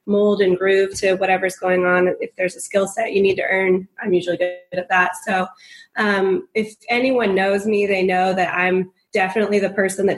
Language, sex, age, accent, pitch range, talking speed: English, female, 20-39, American, 185-215 Hz, 205 wpm